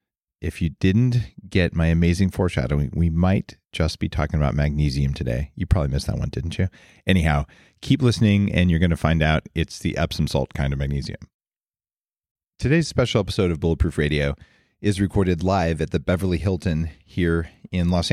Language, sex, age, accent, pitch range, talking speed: English, male, 30-49, American, 80-105 Hz, 180 wpm